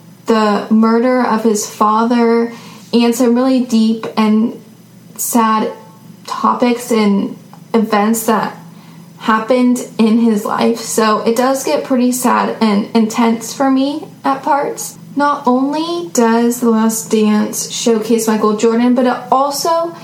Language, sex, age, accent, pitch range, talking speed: English, female, 10-29, American, 215-245 Hz, 130 wpm